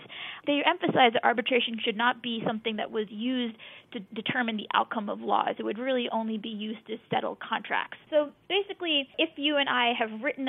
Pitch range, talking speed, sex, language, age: 225-275 Hz, 195 wpm, female, English, 20-39